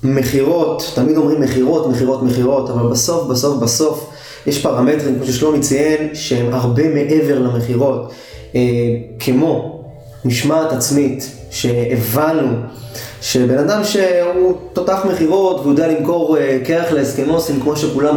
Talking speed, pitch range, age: 120 wpm, 125-155 Hz, 20-39